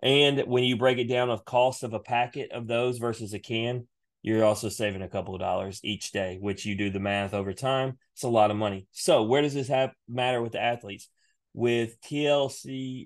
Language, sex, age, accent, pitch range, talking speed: English, male, 30-49, American, 105-125 Hz, 220 wpm